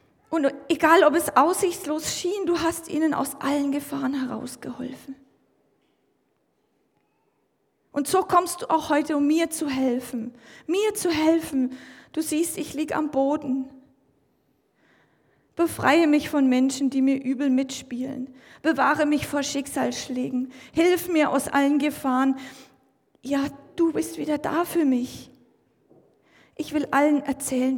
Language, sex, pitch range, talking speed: German, female, 265-320 Hz, 130 wpm